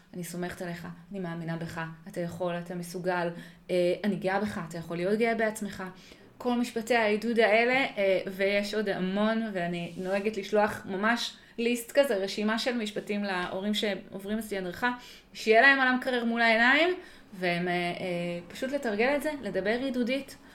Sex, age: female, 20-39